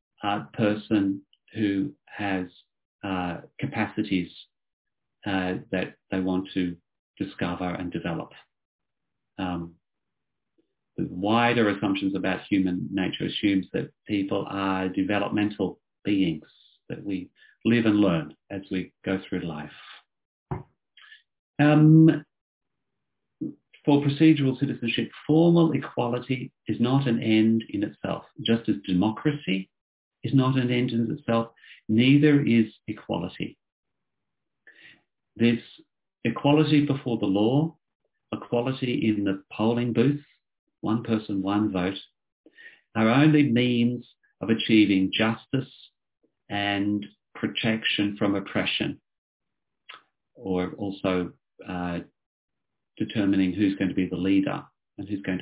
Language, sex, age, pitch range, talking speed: English, male, 40-59, 95-125 Hz, 105 wpm